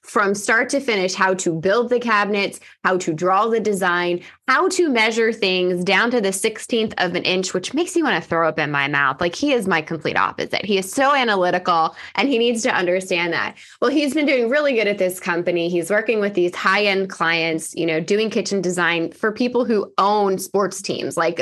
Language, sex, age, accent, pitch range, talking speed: English, female, 20-39, American, 175-225 Hz, 220 wpm